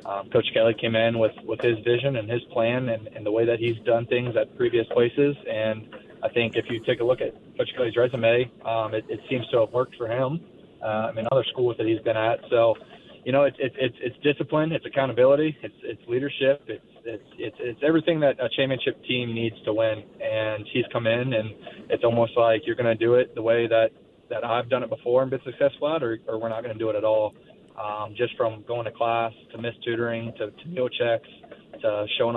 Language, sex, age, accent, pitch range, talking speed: English, male, 20-39, American, 110-125 Hz, 230 wpm